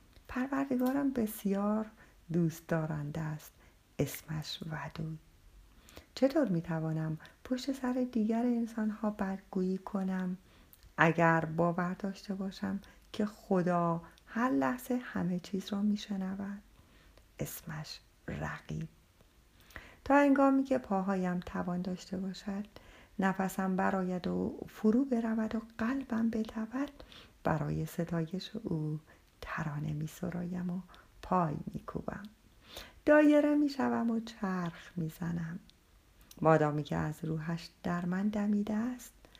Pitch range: 165-225 Hz